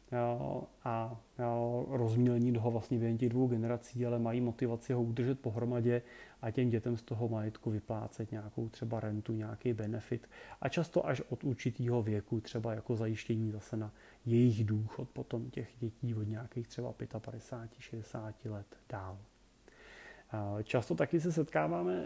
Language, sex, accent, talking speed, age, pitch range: Czech, male, native, 140 wpm, 30-49, 115-135 Hz